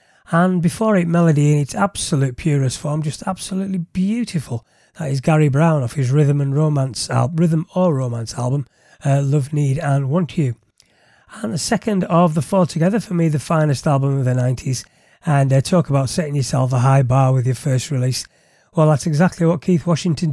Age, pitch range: 30-49, 130-165 Hz